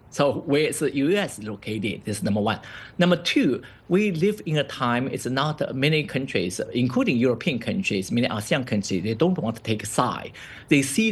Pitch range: 105-135 Hz